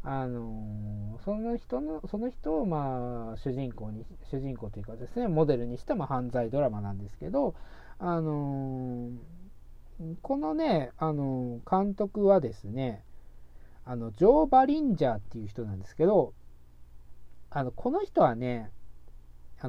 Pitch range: 105-165 Hz